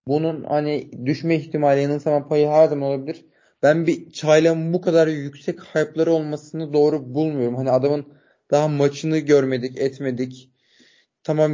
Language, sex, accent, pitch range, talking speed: Turkish, male, native, 135-165 Hz, 135 wpm